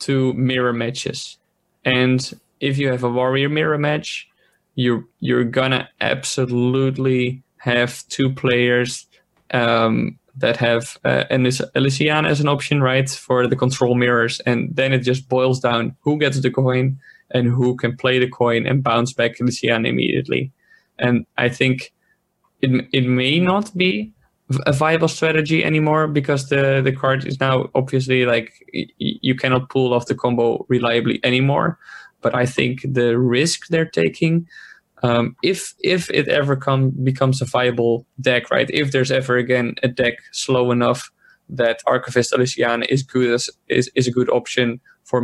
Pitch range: 125-140 Hz